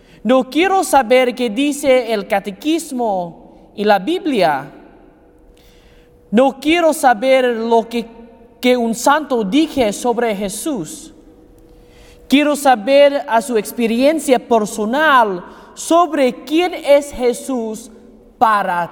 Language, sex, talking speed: English, male, 100 wpm